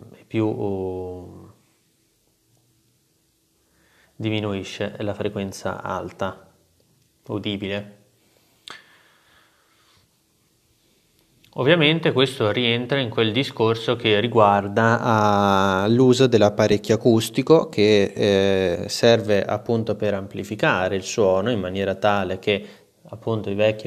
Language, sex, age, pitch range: Italian, male, 20-39, 100-120 Hz